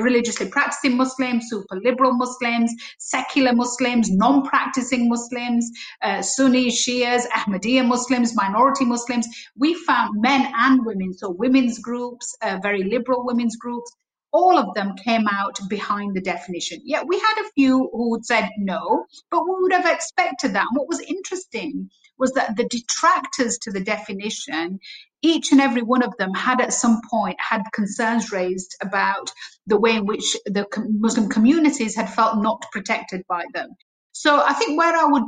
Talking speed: 165 wpm